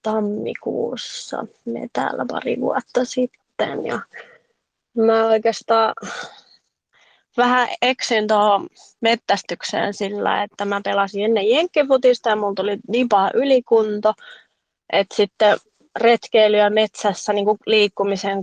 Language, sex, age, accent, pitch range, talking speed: Finnish, female, 20-39, native, 190-220 Hz, 90 wpm